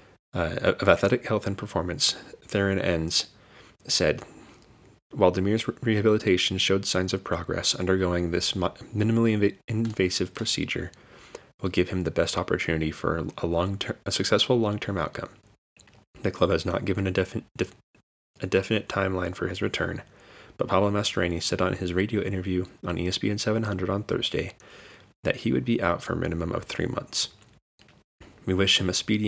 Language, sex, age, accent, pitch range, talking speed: English, male, 20-39, American, 90-105 Hz, 150 wpm